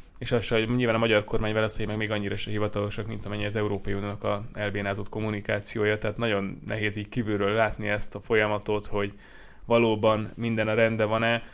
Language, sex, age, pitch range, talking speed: Hungarian, male, 20-39, 100-110 Hz, 185 wpm